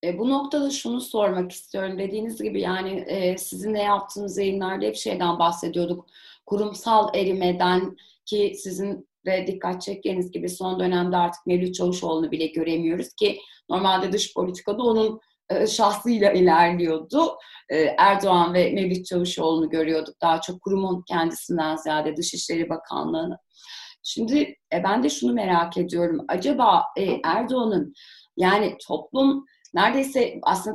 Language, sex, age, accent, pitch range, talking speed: Turkish, female, 30-49, native, 175-245 Hz, 130 wpm